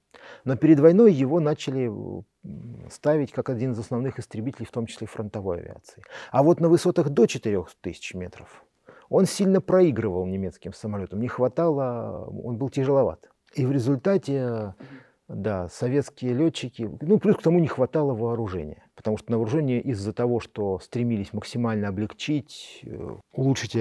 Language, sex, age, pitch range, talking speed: Russian, male, 40-59, 100-130 Hz, 145 wpm